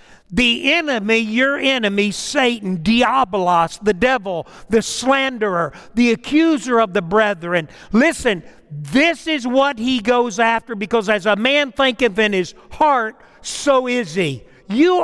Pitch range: 175-250 Hz